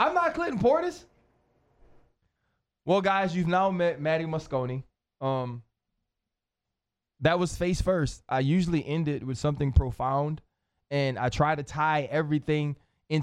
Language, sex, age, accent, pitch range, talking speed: English, male, 20-39, American, 135-175 Hz, 135 wpm